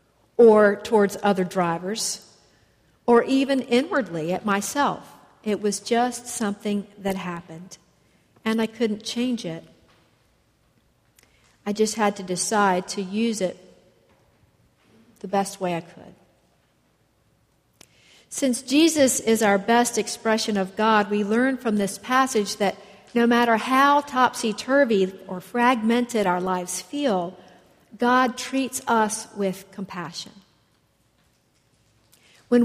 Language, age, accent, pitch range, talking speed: English, 50-69, American, 190-235 Hz, 115 wpm